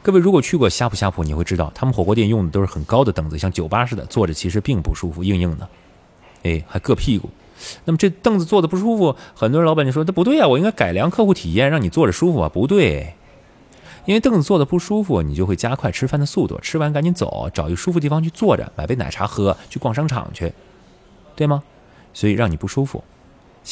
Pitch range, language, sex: 90-145 Hz, Chinese, male